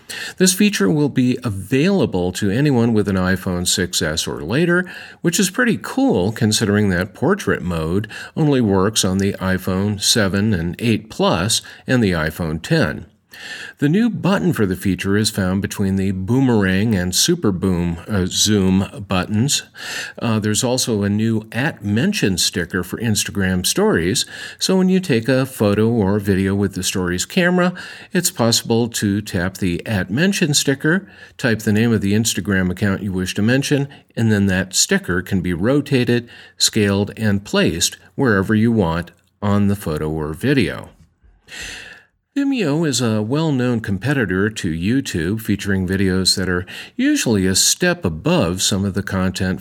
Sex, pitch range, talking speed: male, 95-130 Hz, 155 wpm